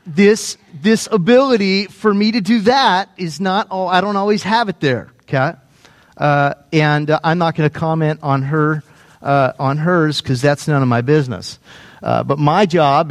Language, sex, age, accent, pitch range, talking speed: English, male, 40-59, American, 155-205 Hz, 190 wpm